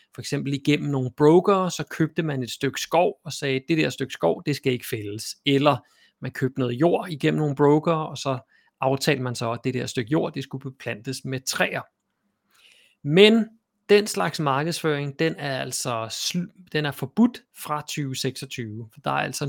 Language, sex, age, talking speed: Danish, male, 30-49, 190 wpm